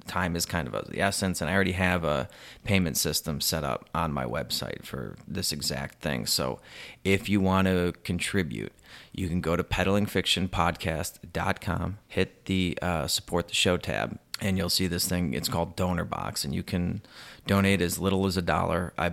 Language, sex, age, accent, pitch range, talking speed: English, male, 30-49, American, 85-95 Hz, 185 wpm